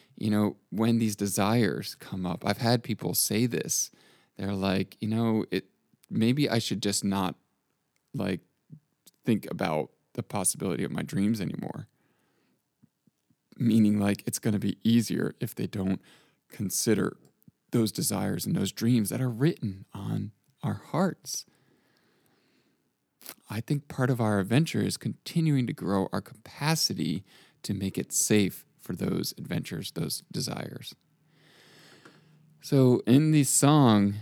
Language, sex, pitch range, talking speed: English, male, 100-135 Hz, 135 wpm